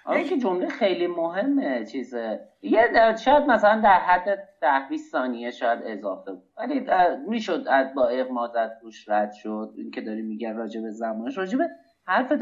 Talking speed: 140 wpm